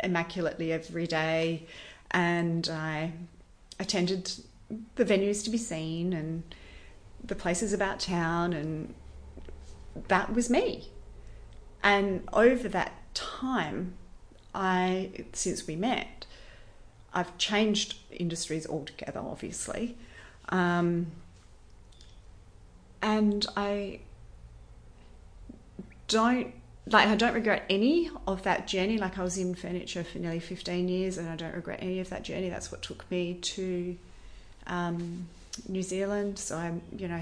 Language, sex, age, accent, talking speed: English, female, 30-49, Australian, 120 wpm